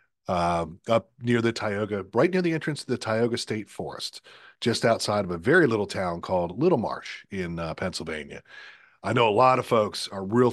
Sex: male